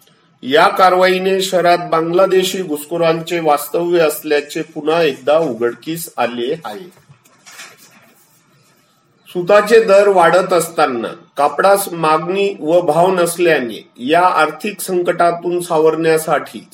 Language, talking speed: Marathi, 90 wpm